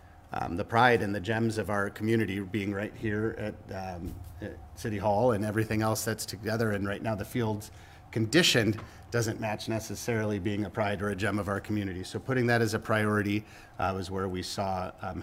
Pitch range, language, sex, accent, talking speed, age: 95-110 Hz, English, male, American, 205 wpm, 40-59